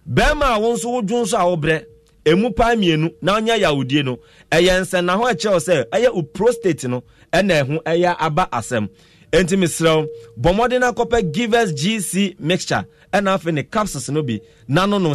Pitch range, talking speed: 145-215 Hz, 170 wpm